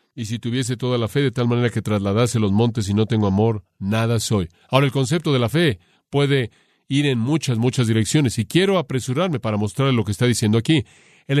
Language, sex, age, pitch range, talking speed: Spanish, male, 40-59, 120-150 Hz, 220 wpm